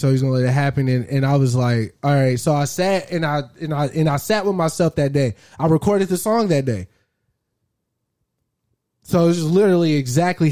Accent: American